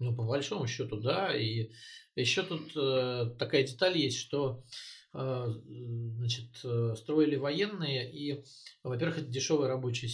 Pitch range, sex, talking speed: 115-140 Hz, male, 130 wpm